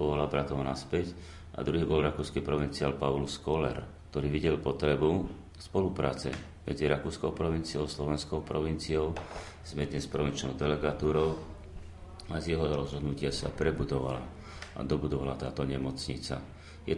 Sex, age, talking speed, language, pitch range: male, 40-59, 125 wpm, Slovak, 70-80 Hz